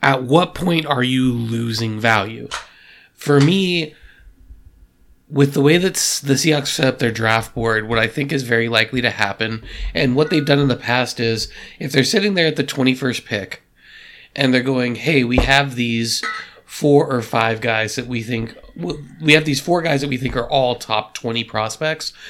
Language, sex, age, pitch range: English, male, 30-49, 110-140 Hz